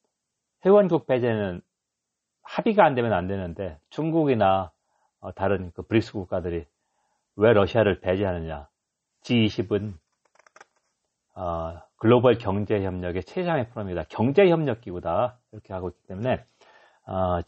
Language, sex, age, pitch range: Korean, male, 40-59, 95-125 Hz